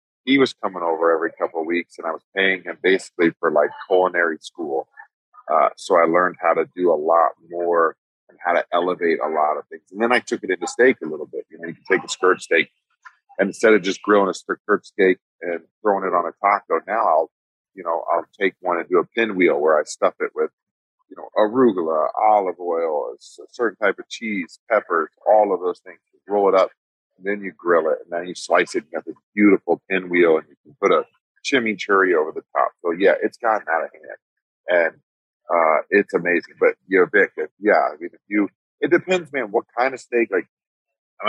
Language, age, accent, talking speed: English, 40-59, American, 225 wpm